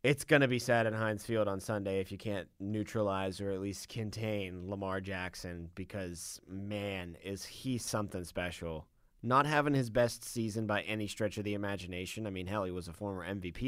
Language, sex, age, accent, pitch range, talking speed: English, male, 20-39, American, 90-110 Hz, 195 wpm